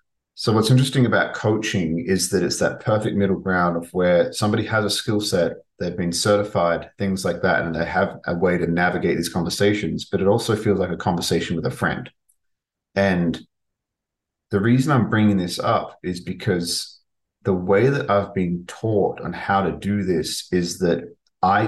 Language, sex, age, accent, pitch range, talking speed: English, male, 30-49, Australian, 90-105 Hz, 185 wpm